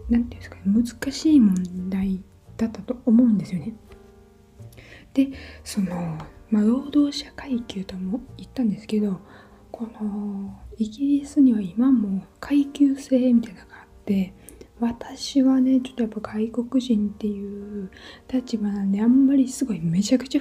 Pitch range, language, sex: 195-255 Hz, Japanese, female